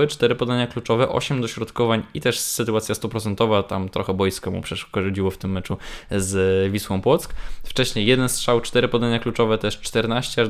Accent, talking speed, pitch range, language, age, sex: native, 165 wpm, 105-125 Hz, Polish, 20-39, male